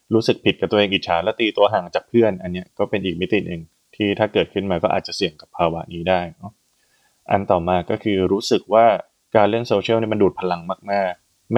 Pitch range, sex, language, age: 90-110 Hz, male, Thai, 20-39